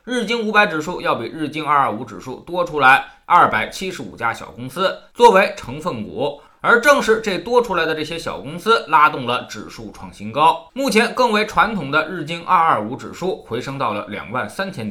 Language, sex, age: Chinese, male, 20-39